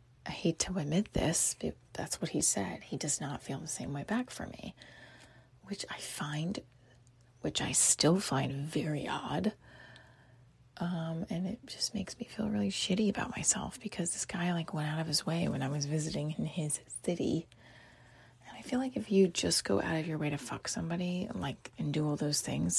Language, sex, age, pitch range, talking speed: English, female, 30-49, 145-185 Hz, 205 wpm